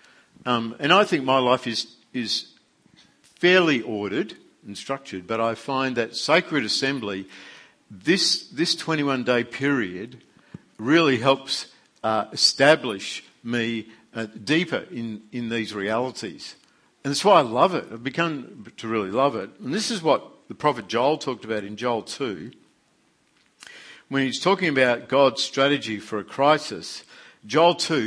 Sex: male